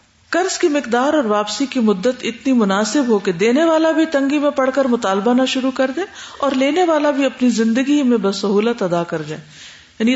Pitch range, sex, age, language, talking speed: 195-260 Hz, female, 50-69, Urdu, 215 wpm